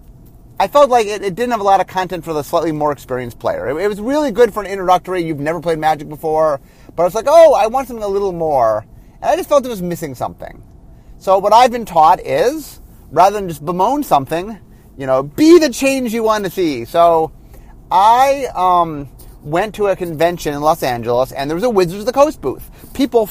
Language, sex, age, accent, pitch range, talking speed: English, male, 30-49, American, 130-200 Hz, 230 wpm